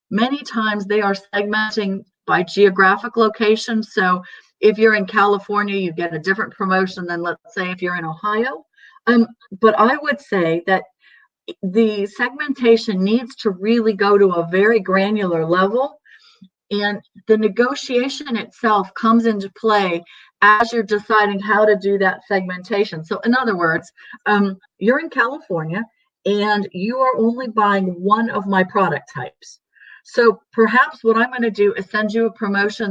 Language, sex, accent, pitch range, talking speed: English, female, American, 190-225 Hz, 160 wpm